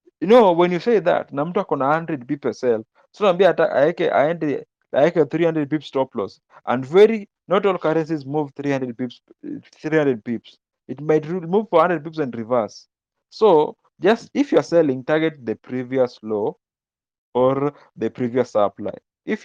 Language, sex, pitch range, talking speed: English, male, 125-165 Hz, 170 wpm